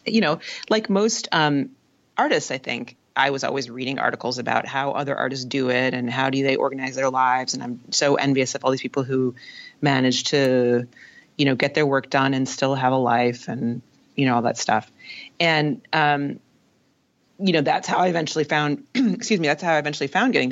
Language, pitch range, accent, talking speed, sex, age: English, 130-155 Hz, American, 210 wpm, female, 30-49